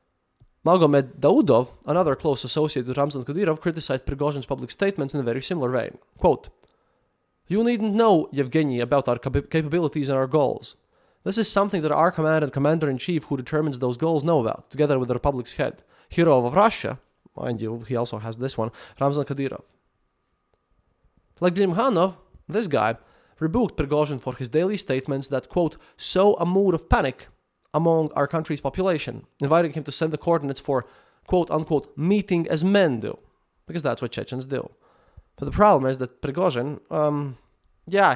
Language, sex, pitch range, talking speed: English, male, 125-160 Hz, 165 wpm